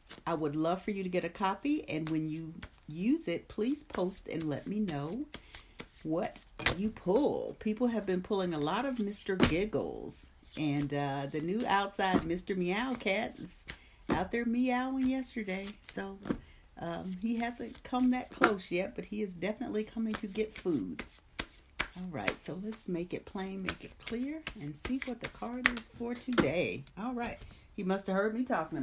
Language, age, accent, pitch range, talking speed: English, 50-69, American, 155-220 Hz, 180 wpm